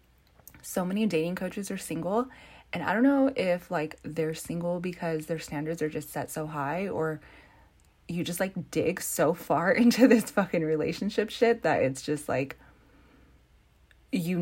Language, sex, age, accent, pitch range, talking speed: English, female, 20-39, American, 135-200 Hz, 160 wpm